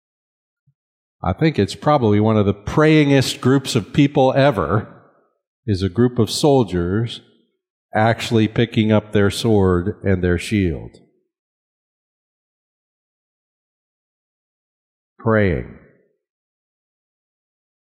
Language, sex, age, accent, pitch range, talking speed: English, male, 50-69, American, 110-150 Hz, 85 wpm